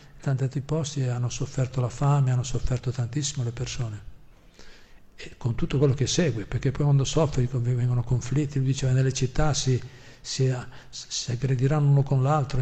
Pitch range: 125-145 Hz